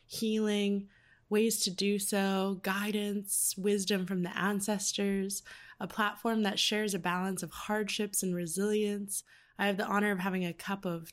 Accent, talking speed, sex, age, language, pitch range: American, 155 wpm, female, 20-39, English, 180-210 Hz